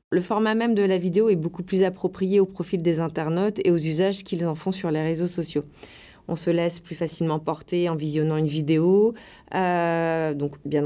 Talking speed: 205 wpm